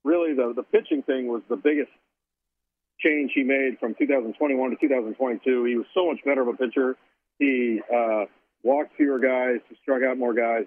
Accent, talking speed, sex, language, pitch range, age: American, 185 wpm, male, English, 120-160 Hz, 50-69